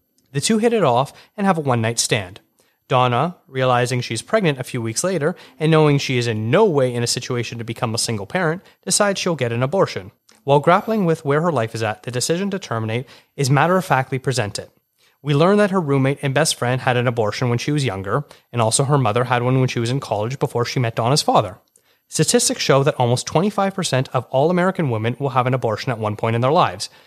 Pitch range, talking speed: 120-160 Hz, 235 wpm